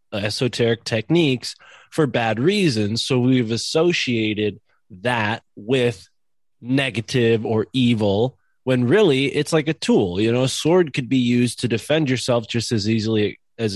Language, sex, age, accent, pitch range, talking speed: English, male, 20-39, American, 105-130 Hz, 145 wpm